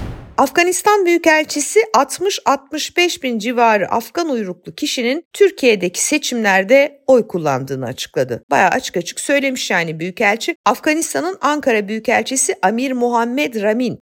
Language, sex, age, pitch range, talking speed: Turkish, female, 50-69, 190-295 Hz, 105 wpm